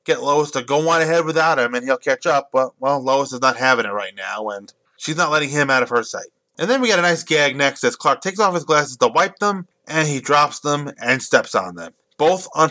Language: English